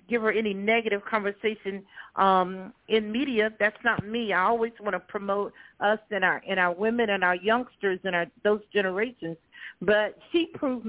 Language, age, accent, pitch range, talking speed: English, 50-69, American, 205-240 Hz, 175 wpm